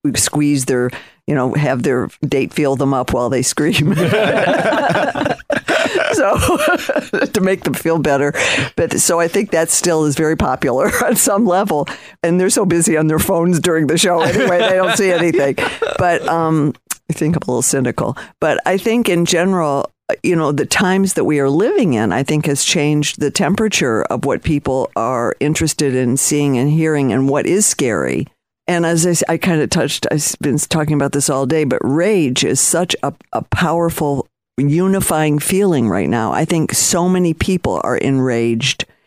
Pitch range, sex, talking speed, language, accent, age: 135-170 Hz, female, 185 wpm, English, American, 50-69